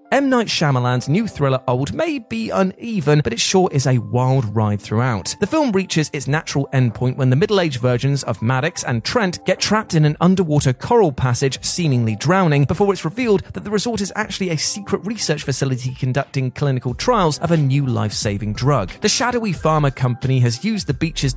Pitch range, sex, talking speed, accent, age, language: 125-180 Hz, male, 195 wpm, British, 30-49, English